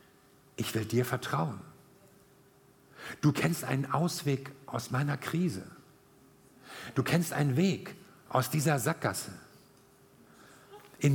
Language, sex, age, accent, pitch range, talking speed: German, male, 50-69, German, 140-185 Hz, 100 wpm